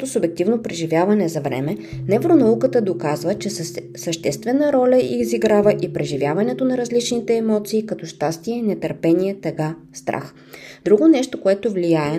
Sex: female